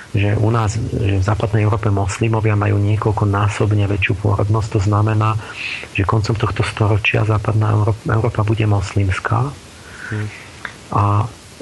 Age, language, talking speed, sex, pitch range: 40-59, Slovak, 125 wpm, male, 105-125 Hz